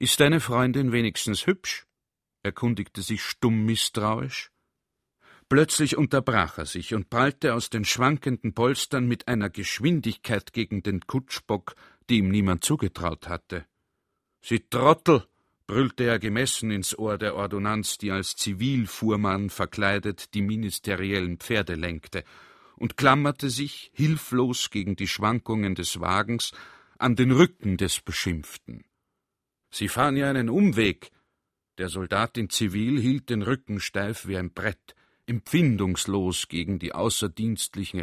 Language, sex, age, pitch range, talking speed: German, male, 50-69, 100-125 Hz, 130 wpm